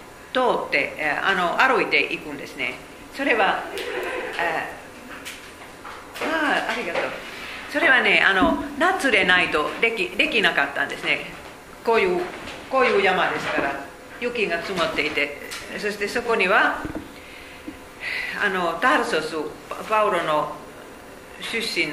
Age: 50-69